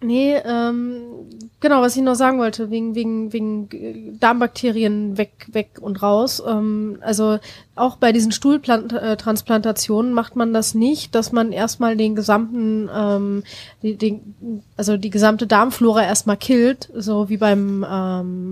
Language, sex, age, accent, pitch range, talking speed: German, female, 20-39, German, 210-240 Hz, 140 wpm